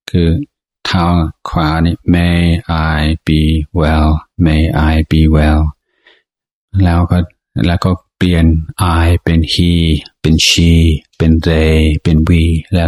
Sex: male